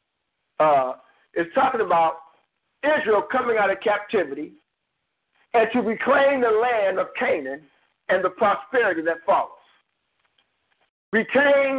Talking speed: 110 wpm